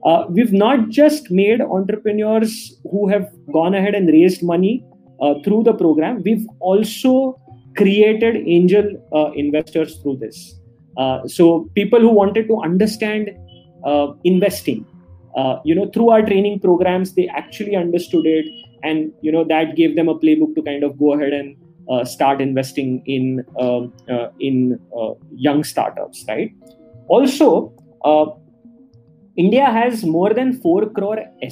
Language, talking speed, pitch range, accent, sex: English, 150 wpm, 145-215 Hz, Indian, male